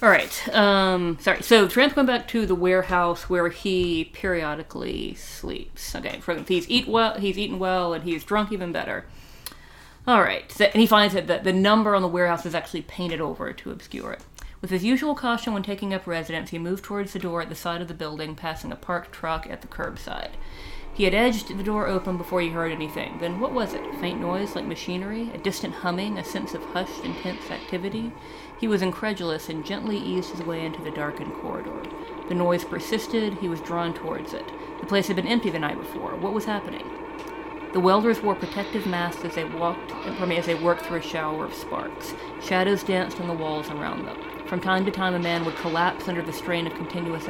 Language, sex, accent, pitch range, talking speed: English, female, American, 170-200 Hz, 205 wpm